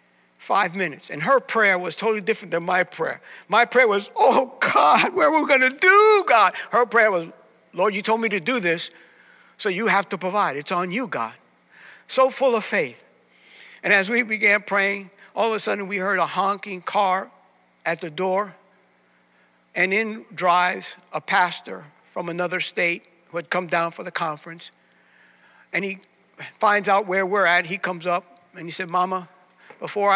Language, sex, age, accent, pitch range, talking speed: English, male, 60-79, American, 150-195 Hz, 185 wpm